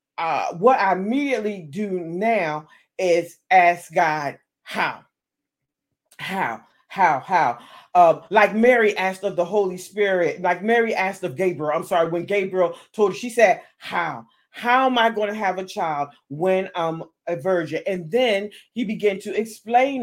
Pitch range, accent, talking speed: 175-215 Hz, American, 155 wpm